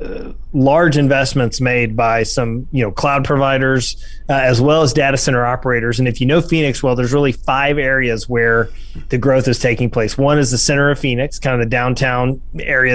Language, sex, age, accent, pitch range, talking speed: English, male, 30-49, American, 125-140 Hz, 205 wpm